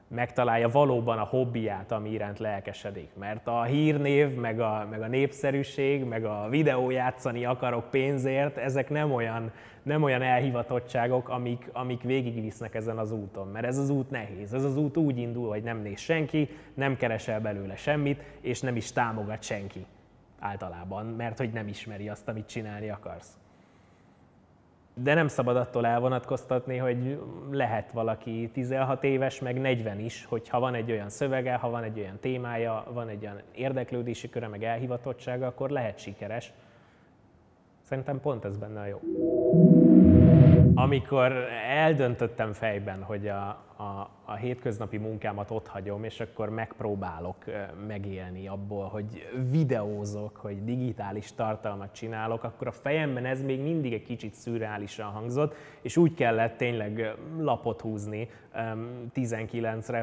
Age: 20-39